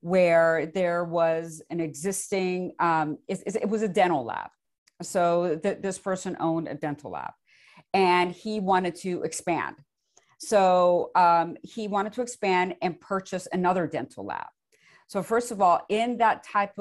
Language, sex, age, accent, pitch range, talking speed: English, female, 50-69, American, 170-205 Hz, 150 wpm